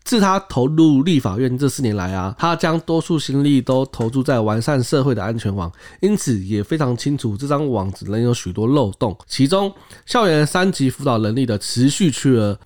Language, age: Chinese, 20-39